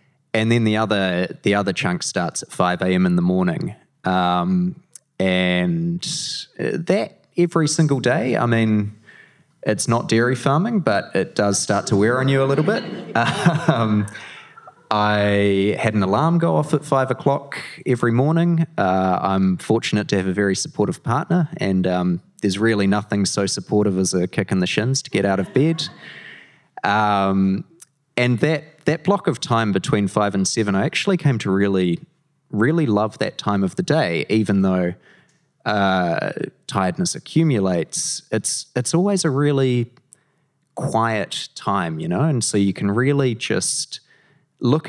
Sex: male